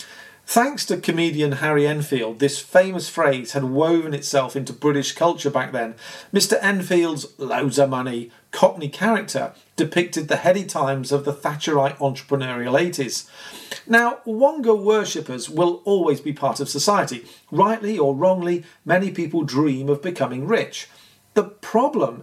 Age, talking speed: 40-59, 140 wpm